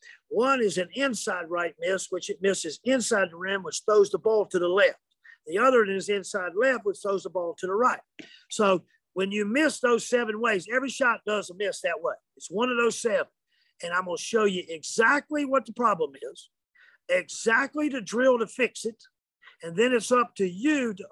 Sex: male